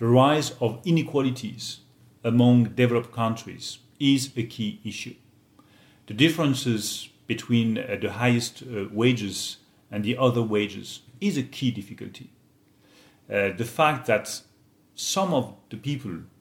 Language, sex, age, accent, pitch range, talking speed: English, male, 40-59, French, 105-135 Hz, 120 wpm